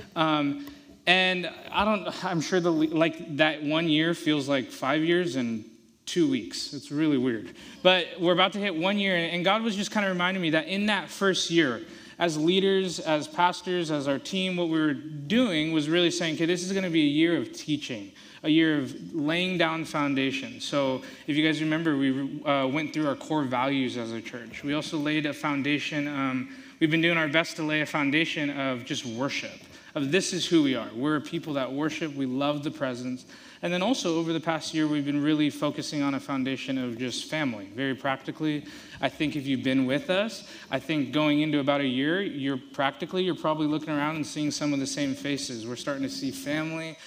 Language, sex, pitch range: English, male, 140-175 Hz